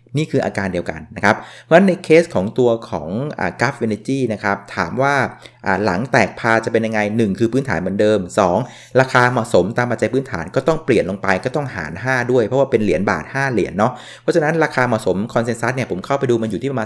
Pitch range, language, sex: 105-130 Hz, Thai, male